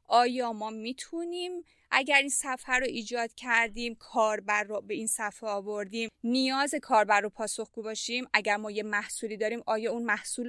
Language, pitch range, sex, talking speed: Persian, 210-260 Hz, female, 160 wpm